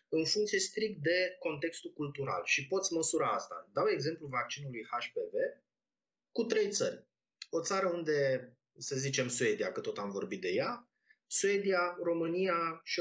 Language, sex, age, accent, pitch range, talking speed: Romanian, male, 20-39, native, 130-210 Hz, 150 wpm